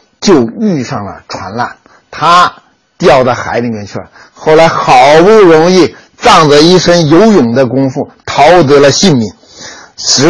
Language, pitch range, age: Chinese, 140-205 Hz, 50-69